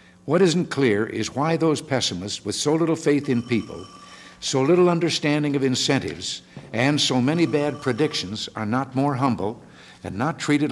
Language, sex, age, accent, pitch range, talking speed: English, male, 60-79, American, 110-140 Hz, 170 wpm